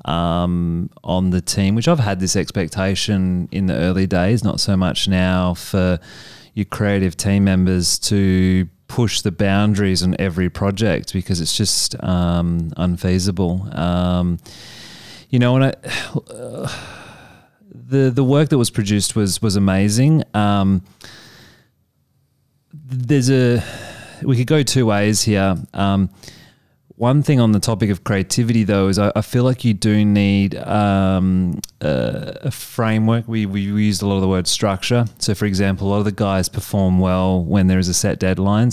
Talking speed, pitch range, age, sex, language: 160 wpm, 95-115 Hz, 30-49, male, English